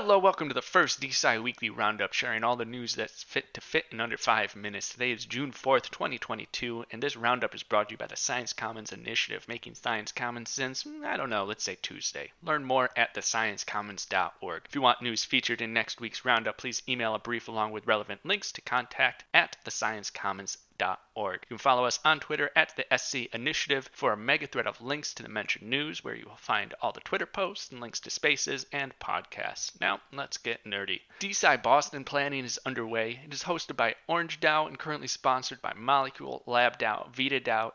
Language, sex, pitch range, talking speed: English, male, 115-140 Hz, 205 wpm